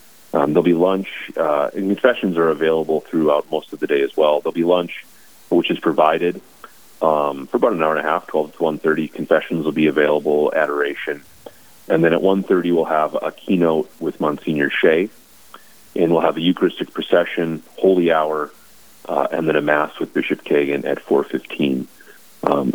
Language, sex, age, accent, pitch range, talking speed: English, male, 30-49, American, 75-85 Hz, 185 wpm